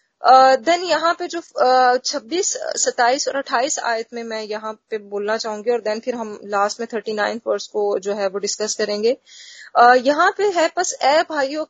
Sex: female